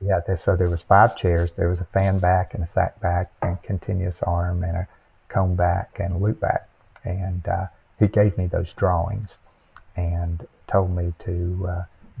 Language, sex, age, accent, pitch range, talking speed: English, male, 50-69, American, 85-100 Hz, 190 wpm